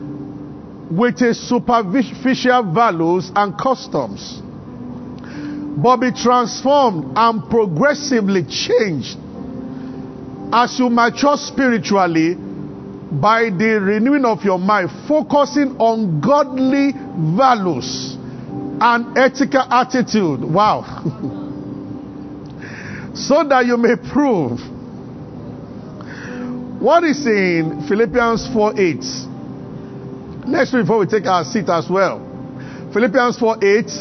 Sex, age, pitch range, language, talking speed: male, 50-69, 185-250 Hz, English, 90 wpm